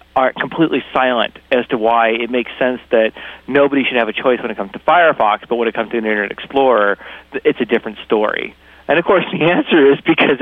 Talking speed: 220 wpm